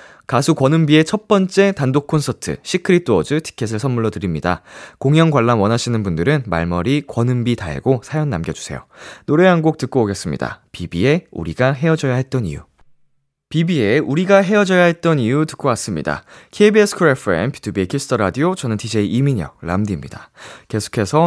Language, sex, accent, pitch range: Korean, male, native, 110-165 Hz